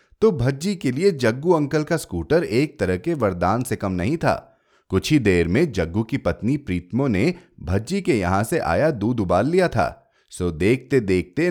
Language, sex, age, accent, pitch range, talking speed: Hindi, male, 30-49, native, 95-150 Hz, 195 wpm